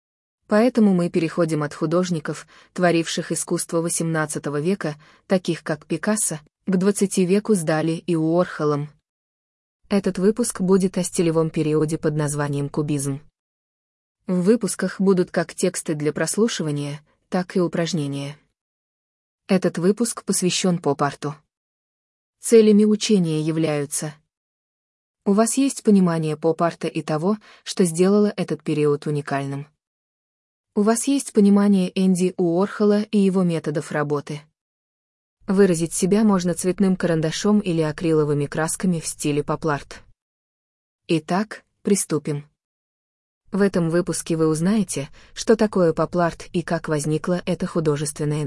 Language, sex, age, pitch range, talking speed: Danish, female, 20-39, 150-190 Hz, 115 wpm